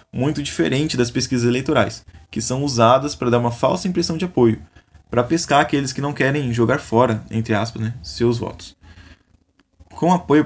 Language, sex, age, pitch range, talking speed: Portuguese, male, 20-39, 110-140 Hz, 170 wpm